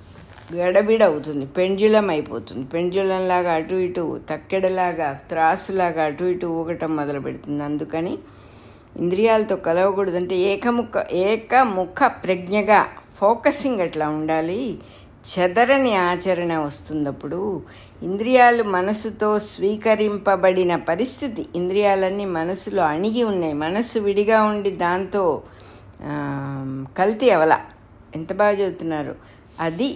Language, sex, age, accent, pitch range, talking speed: English, female, 60-79, Indian, 155-215 Hz, 70 wpm